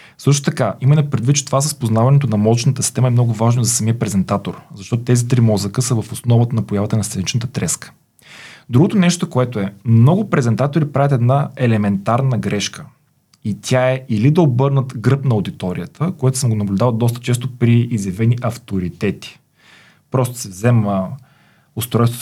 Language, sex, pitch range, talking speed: Bulgarian, male, 110-130 Hz, 165 wpm